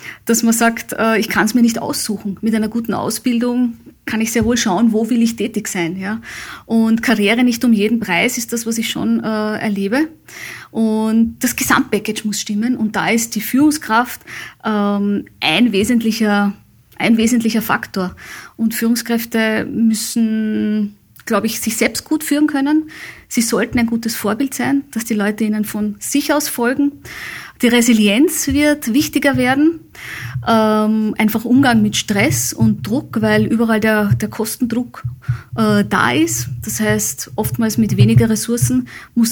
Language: German